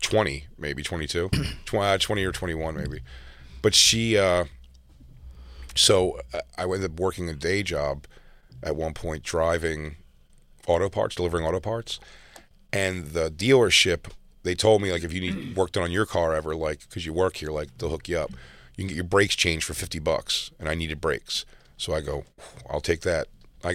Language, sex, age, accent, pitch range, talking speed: English, male, 40-59, American, 70-95 Hz, 185 wpm